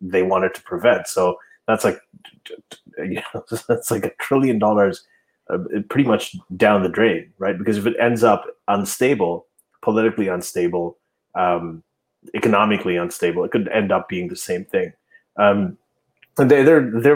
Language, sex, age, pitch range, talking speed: English, male, 30-49, 95-125 Hz, 155 wpm